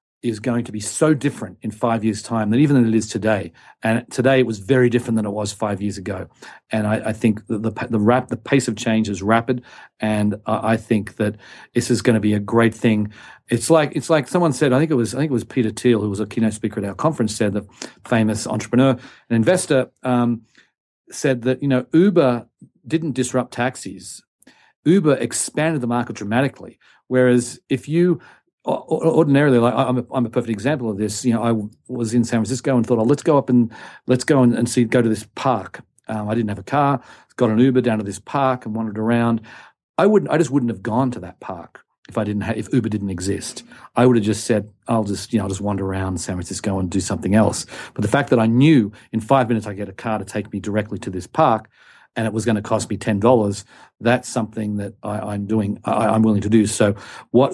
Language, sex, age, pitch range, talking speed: English, male, 40-59, 105-125 Hz, 240 wpm